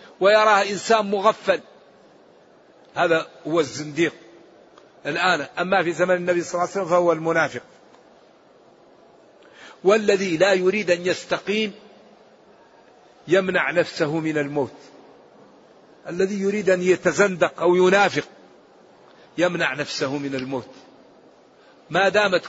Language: Arabic